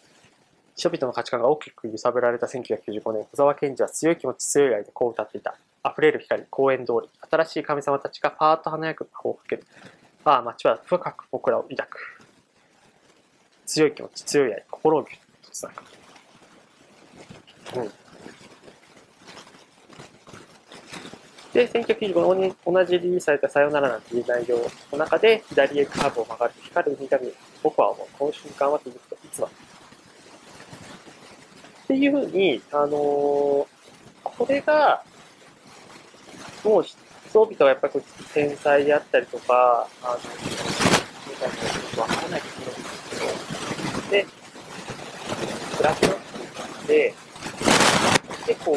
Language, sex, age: Japanese, male, 20-39